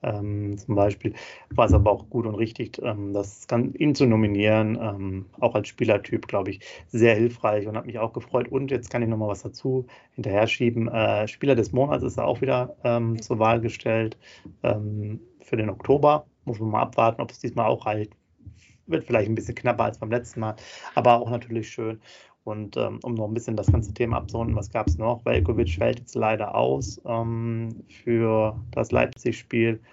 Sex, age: male, 30-49